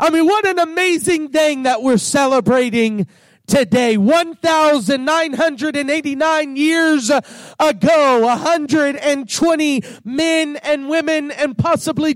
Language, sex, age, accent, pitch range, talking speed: English, male, 40-59, American, 275-345 Hz, 135 wpm